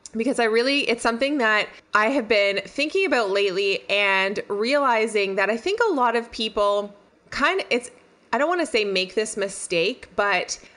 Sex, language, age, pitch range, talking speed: female, English, 20-39, 200-275 Hz, 185 wpm